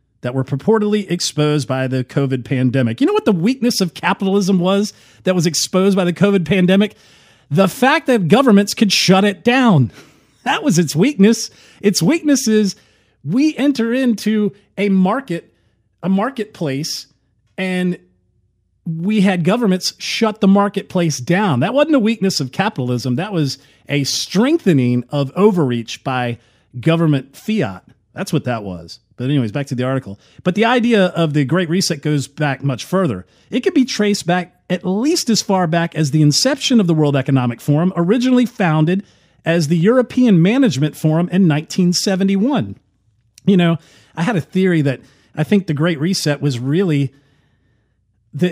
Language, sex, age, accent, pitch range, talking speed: English, male, 40-59, American, 130-200 Hz, 160 wpm